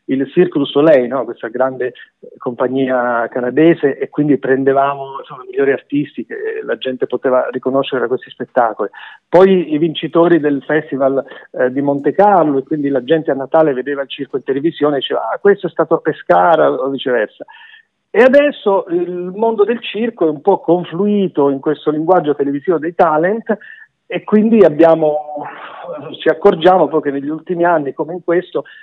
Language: Italian